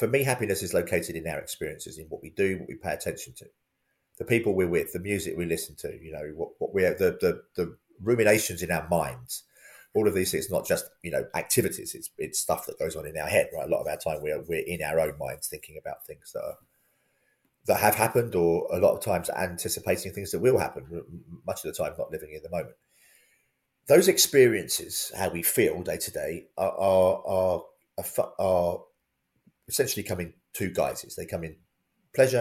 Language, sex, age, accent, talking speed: English, male, 30-49, British, 215 wpm